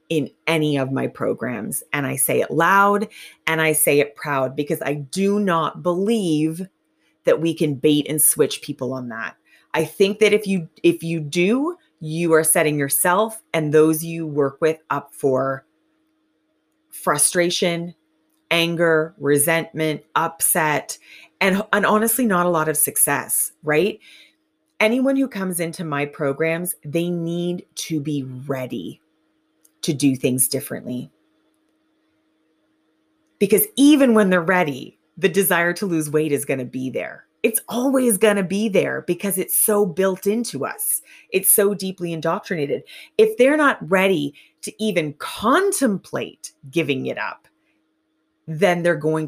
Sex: female